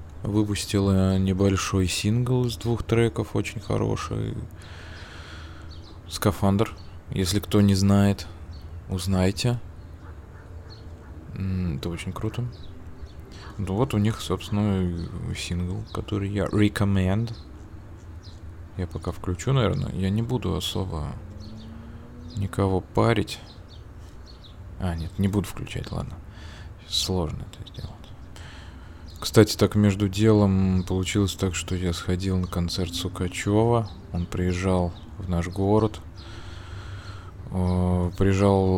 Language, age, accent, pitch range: Russian, 20-39, native, 85-105 Hz